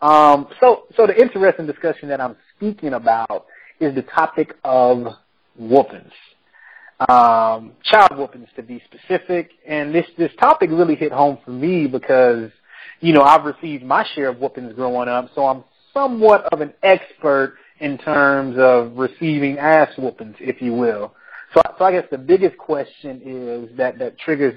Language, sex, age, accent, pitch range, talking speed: English, male, 30-49, American, 130-165 Hz, 165 wpm